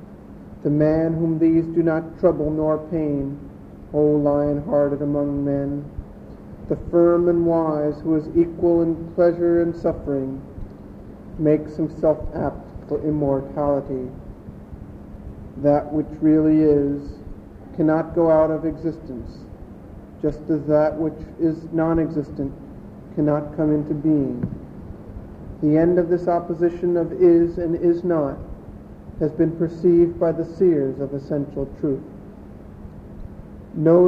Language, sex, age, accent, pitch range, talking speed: English, male, 50-69, American, 145-170 Hz, 120 wpm